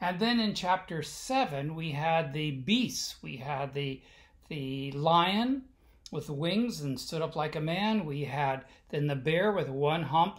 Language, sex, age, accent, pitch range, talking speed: English, male, 60-79, American, 150-195 Hz, 175 wpm